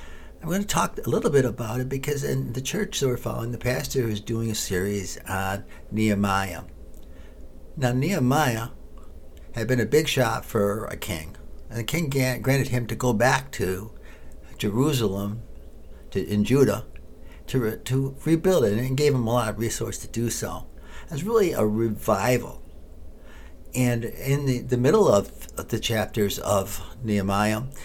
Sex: male